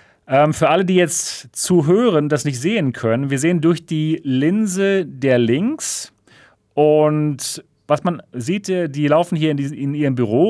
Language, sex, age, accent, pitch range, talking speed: German, male, 40-59, German, 120-165 Hz, 165 wpm